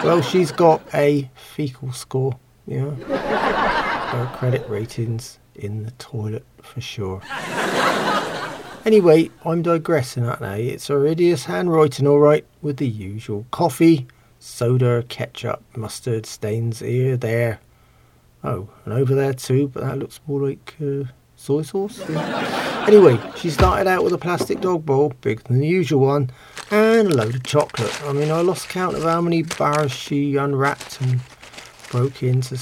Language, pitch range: English, 125-150 Hz